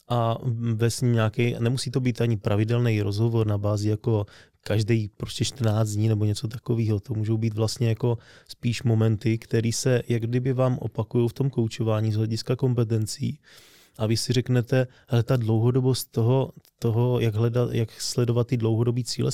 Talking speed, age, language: 170 wpm, 20-39, Czech